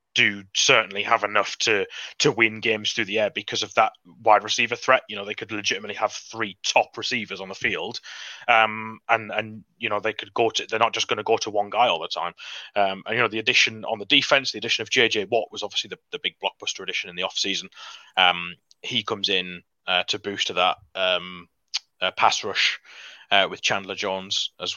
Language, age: English, 30-49